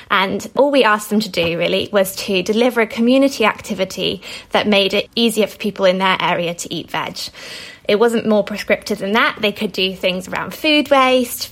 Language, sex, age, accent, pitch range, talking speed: English, female, 20-39, British, 190-225 Hz, 205 wpm